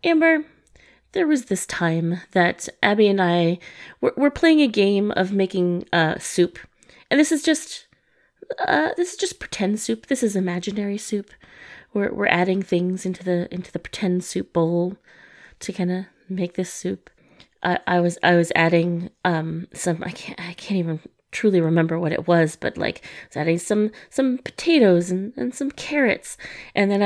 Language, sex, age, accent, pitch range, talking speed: English, female, 30-49, American, 180-275 Hz, 180 wpm